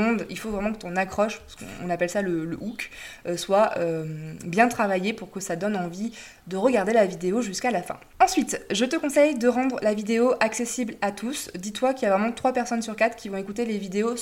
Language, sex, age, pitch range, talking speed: French, female, 20-39, 195-240 Hz, 235 wpm